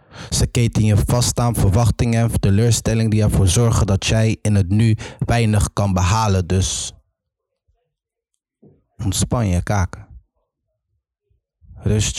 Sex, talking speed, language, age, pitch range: male, 120 wpm, Dutch, 20-39, 95-110 Hz